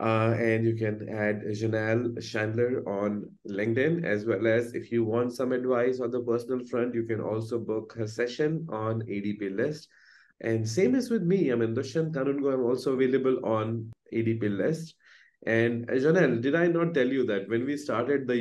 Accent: Indian